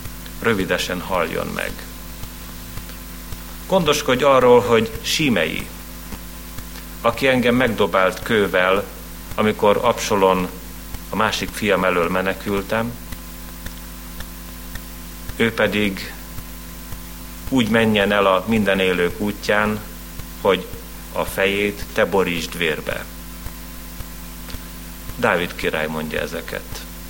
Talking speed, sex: 80 wpm, male